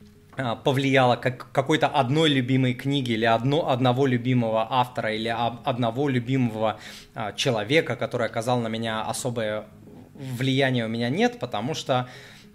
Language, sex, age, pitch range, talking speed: Russian, male, 20-39, 115-140 Hz, 120 wpm